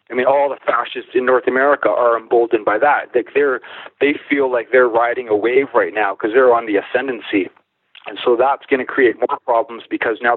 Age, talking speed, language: 40-59, 220 wpm, English